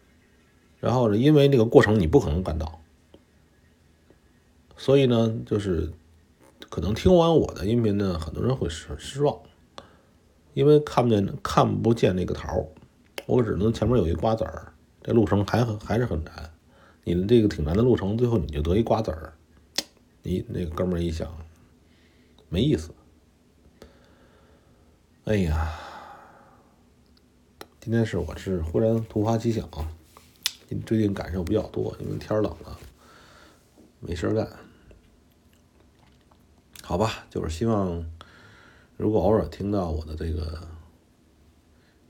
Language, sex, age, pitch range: Chinese, male, 50-69, 80-105 Hz